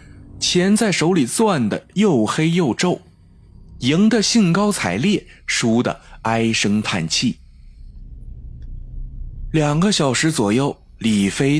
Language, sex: Chinese, male